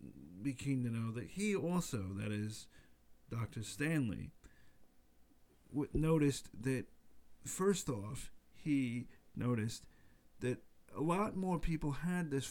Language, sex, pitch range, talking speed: English, male, 115-145 Hz, 120 wpm